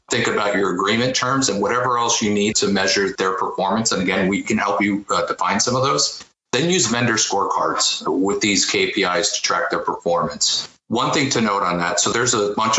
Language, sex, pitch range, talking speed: English, male, 100-120 Hz, 215 wpm